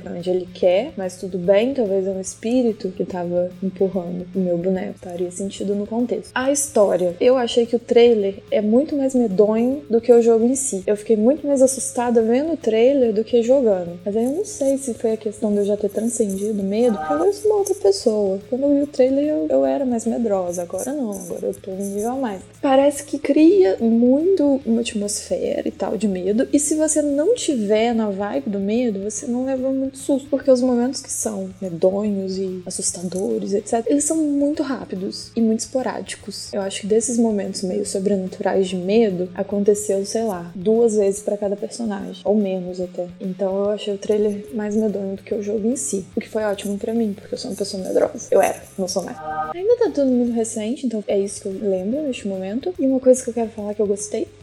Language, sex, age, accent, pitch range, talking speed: Portuguese, female, 20-39, Brazilian, 195-245 Hz, 220 wpm